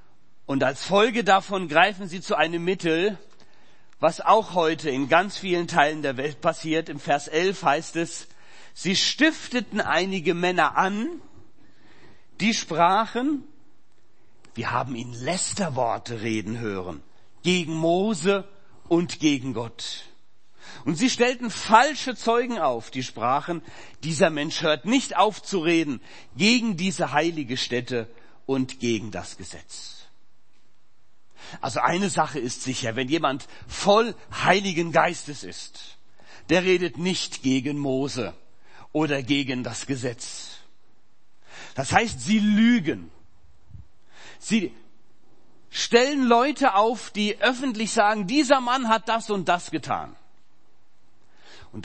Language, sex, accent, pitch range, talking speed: German, male, German, 130-200 Hz, 120 wpm